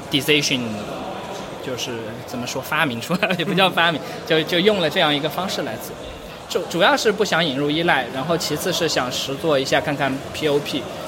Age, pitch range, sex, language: 20-39, 135-175 Hz, male, Chinese